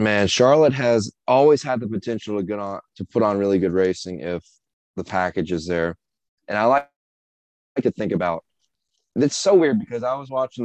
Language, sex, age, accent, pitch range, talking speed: English, male, 20-39, American, 95-120 Hz, 185 wpm